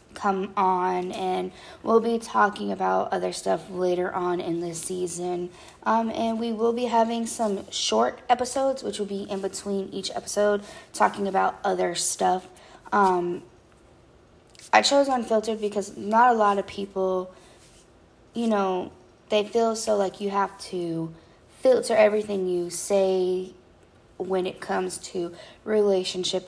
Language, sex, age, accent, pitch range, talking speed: English, female, 20-39, American, 185-220 Hz, 140 wpm